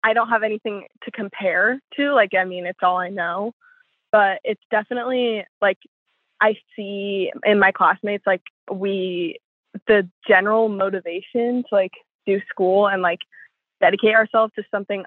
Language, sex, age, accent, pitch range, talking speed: English, female, 20-39, American, 185-225 Hz, 150 wpm